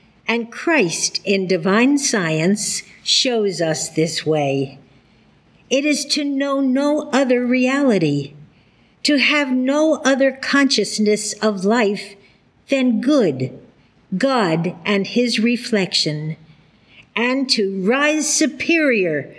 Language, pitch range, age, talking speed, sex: English, 175-245 Hz, 60-79, 100 wpm, female